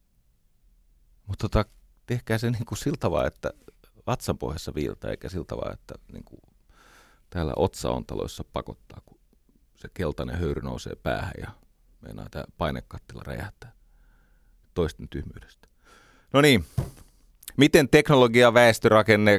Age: 30-49